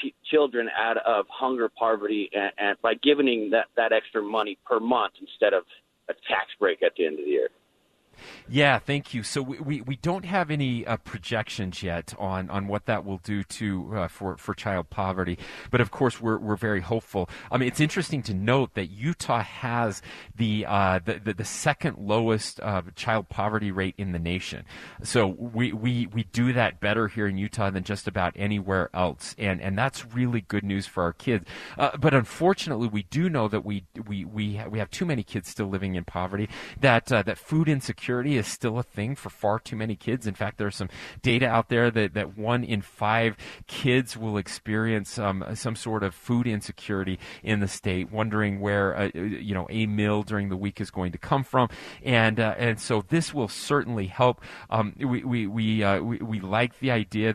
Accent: American